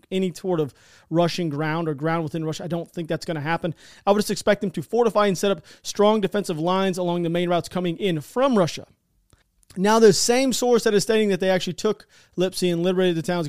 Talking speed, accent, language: 235 wpm, American, English